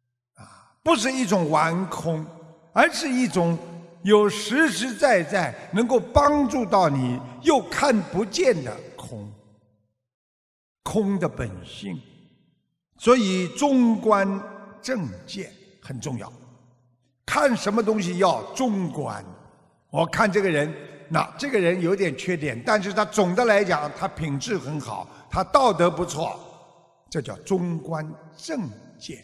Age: 50-69